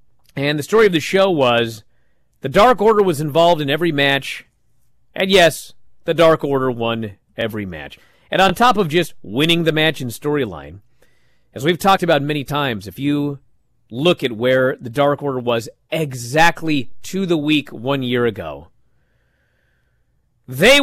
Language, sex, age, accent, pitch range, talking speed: English, male, 40-59, American, 120-175 Hz, 160 wpm